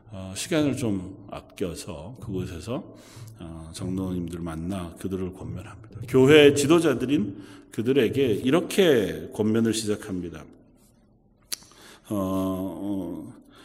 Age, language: 40-59, Korean